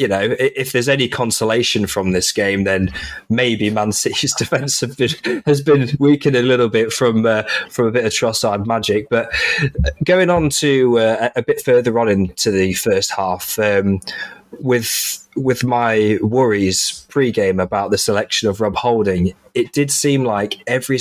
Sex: male